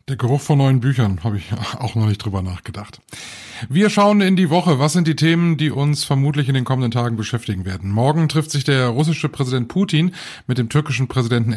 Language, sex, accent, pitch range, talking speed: German, male, German, 110-145 Hz, 215 wpm